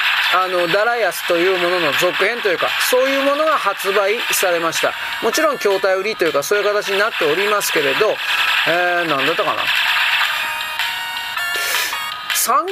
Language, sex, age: Japanese, male, 40-59